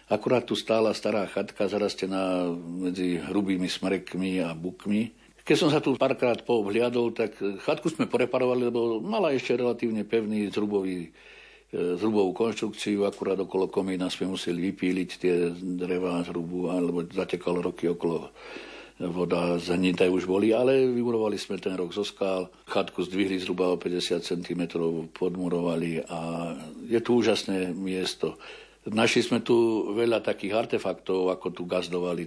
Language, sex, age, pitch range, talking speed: Slovak, male, 60-79, 90-105 Hz, 140 wpm